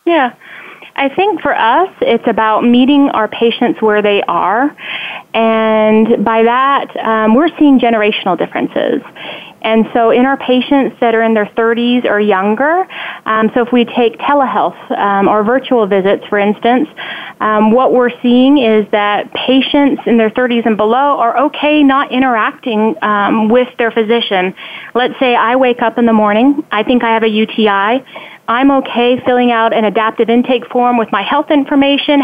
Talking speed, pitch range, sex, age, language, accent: 170 wpm, 225-280 Hz, female, 30-49, English, American